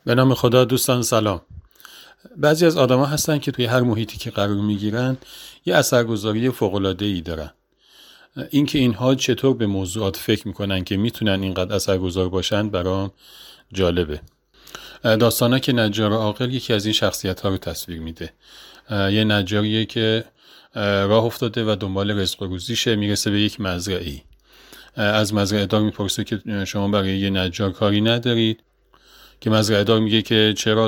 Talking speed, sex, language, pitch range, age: 150 wpm, male, Persian, 95-115 Hz, 40-59